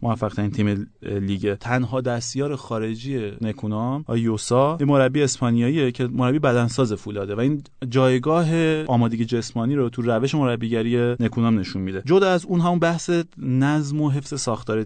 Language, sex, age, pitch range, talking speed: Persian, male, 30-49, 115-145 Hz, 150 wpm